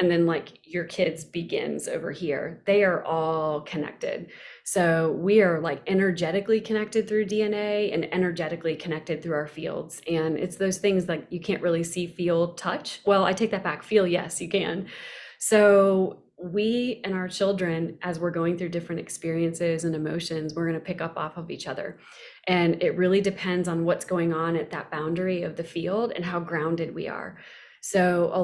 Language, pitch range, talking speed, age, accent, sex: English, 165-190 Hz, 190 wpm, 20-39, American, female